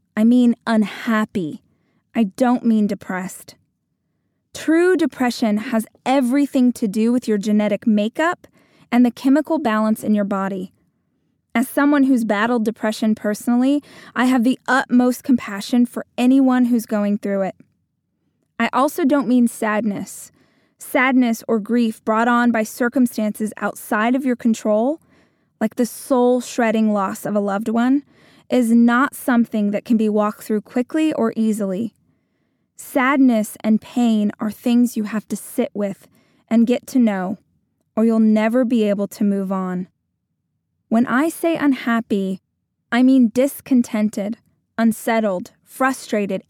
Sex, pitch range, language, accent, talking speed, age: female, 215-255 Hz, English, American, 140 wpm, 20-39